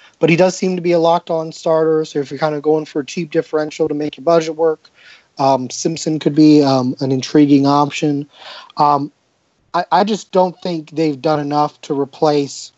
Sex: male